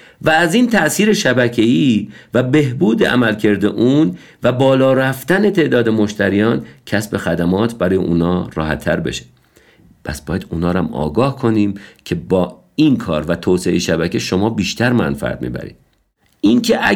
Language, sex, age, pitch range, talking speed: Persian, male, 50-69, 90-130 Hz, 140 wpm